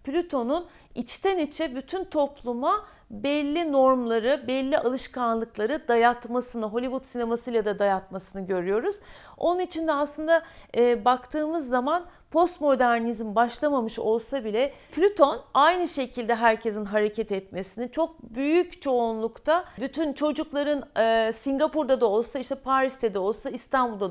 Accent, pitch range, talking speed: native, 230-300 Hz, 115 wpm